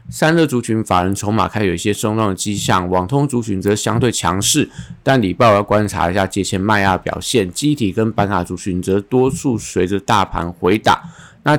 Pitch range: 95-120 Hz